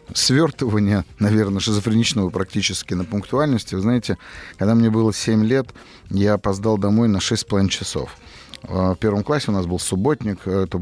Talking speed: 150 wpm